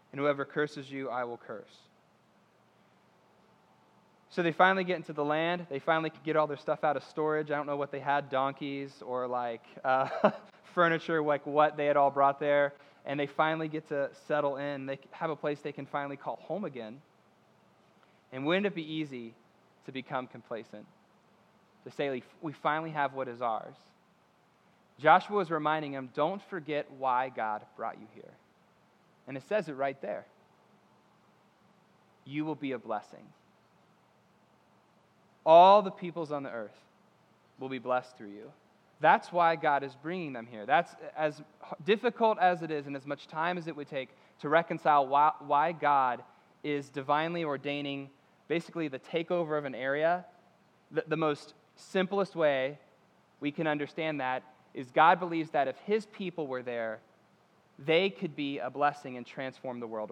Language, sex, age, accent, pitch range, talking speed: English, male, 20-39, American, 135-165 Hz, 165 wpm